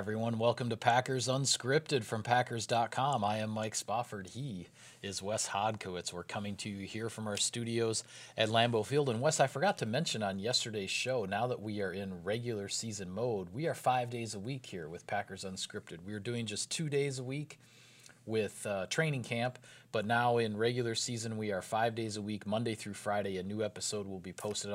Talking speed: 205 wpm